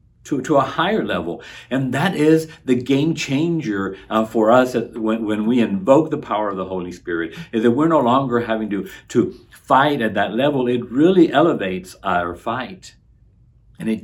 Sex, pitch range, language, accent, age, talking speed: male, 105-125 Hz, English, American, 50-69, 190 wpm